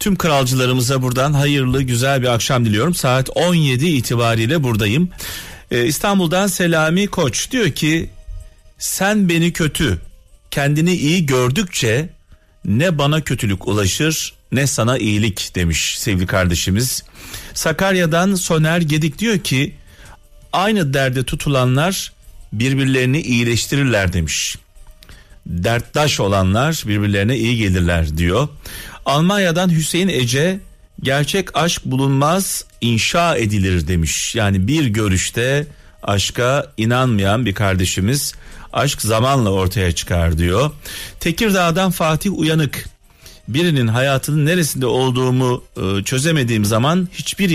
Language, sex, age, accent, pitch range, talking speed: Turkish, male, 40-59, native, 100-155 Hz, 105 wpm